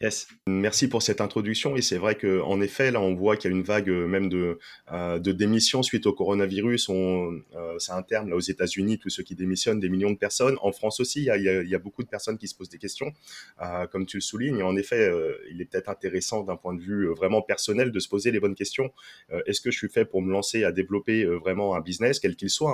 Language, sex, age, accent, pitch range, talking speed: French, male, 20-39, French, 90-110 Hz, 275 wpm